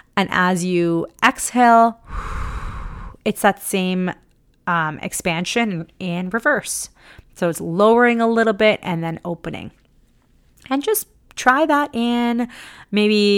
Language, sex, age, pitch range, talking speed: English, female, 30-49, 170-230 Hz, 115 wpm